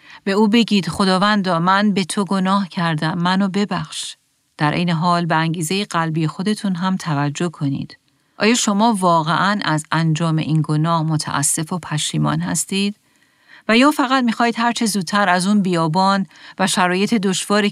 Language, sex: Persian, female